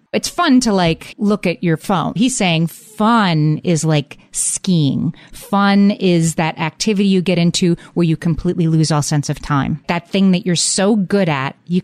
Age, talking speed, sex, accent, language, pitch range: 30-49, 190 wpm, female, American, English, 160-195 Hz